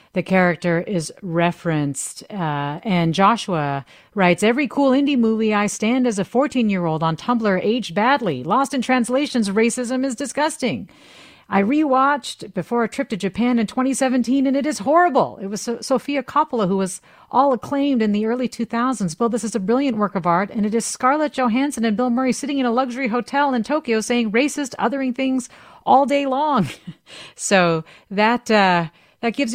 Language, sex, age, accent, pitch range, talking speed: English, female, 40-59, American, 185-255 Hz, 175 wpm